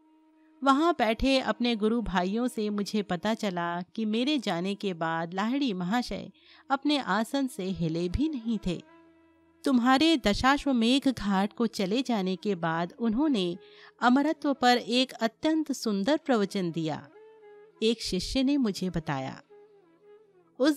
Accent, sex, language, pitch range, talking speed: native, female, Hindi, 205-295 Hz, 130 wpm